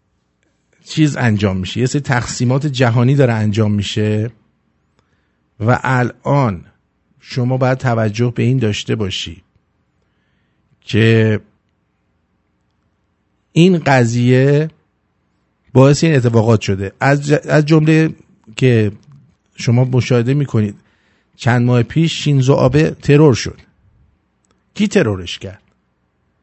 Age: 50-69